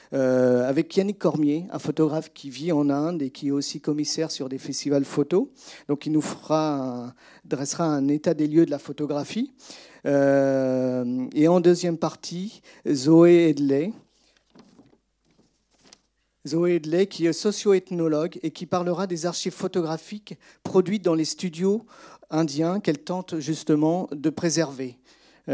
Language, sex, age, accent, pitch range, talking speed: French, male, 50-69, French, 140-175 Hz, 140 wpm